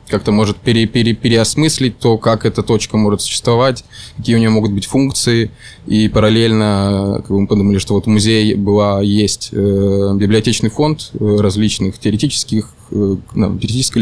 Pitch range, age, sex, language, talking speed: 100-115 Hz, 20-39, male, Ukrainian, 145 wpm